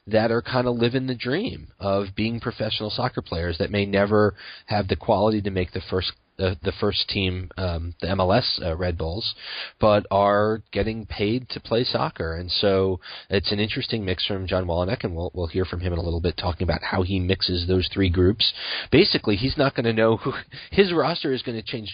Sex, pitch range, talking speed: male, 90-115 Hz, 215 wpm